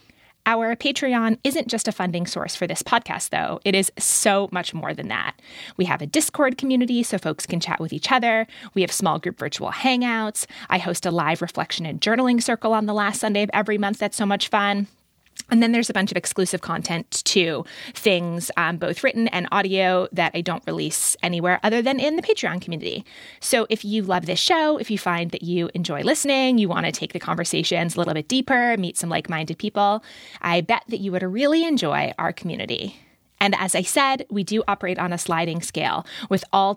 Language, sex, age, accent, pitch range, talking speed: English, female, 20-39, American, 180-245 Hz, 210 wpm